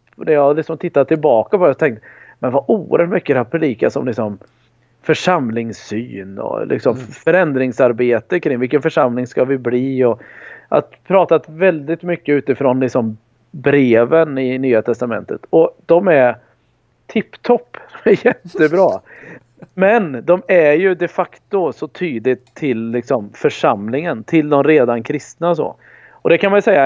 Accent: native